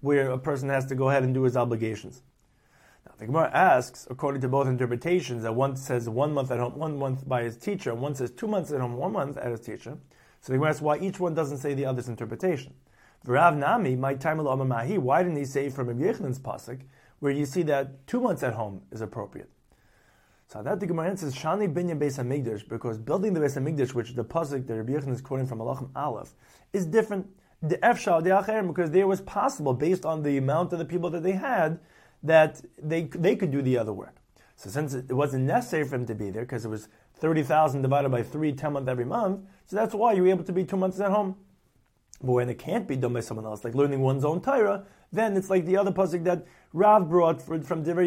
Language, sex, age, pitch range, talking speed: English, male, 30-49, 130-175 Hz, 220 wpm